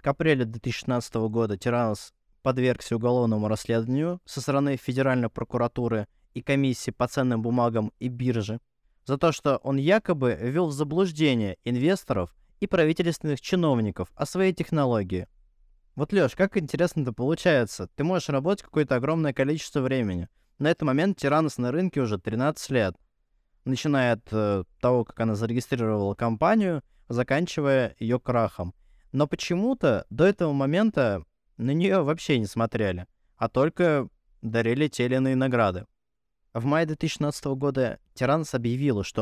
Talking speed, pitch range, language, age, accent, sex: 135 wpm, 115-150 Hz, Russian, 20-39, native, male